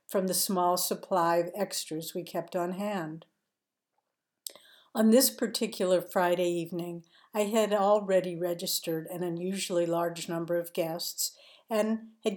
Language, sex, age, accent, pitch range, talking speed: English, female, 60-79, American, 175-200 Hz, 130 wpm